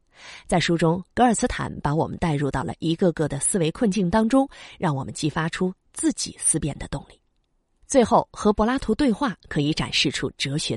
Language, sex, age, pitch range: Chinese, female, 20-39, 150-225 Hz